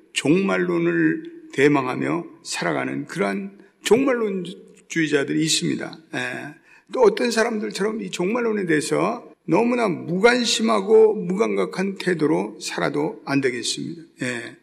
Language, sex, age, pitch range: Korean, male, 50-69, 165-225 Hz